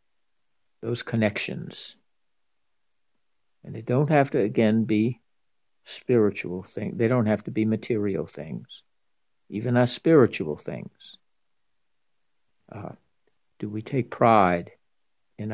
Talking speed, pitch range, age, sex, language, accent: 110 wpm, 105-120 Hz, 60-79, male, English, American